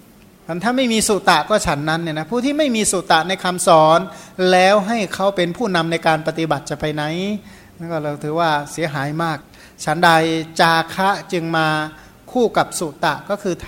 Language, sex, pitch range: Thai, male, 155-190 Hz